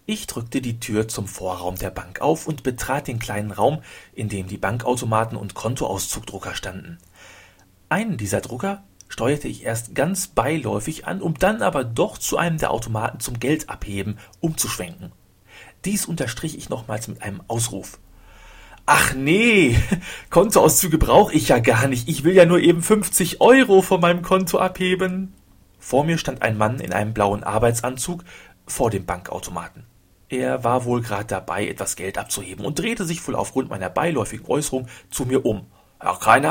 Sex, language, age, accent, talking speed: male, German, 40-59, German, 165 wpm